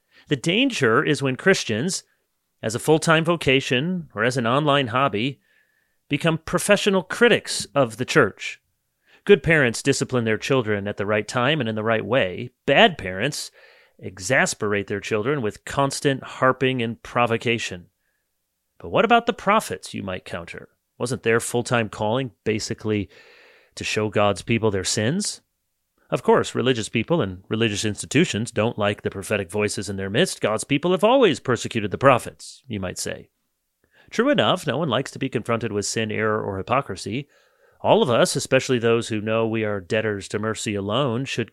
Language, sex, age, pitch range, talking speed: English, male, 30-49, 105-145 Hz, 165 wpm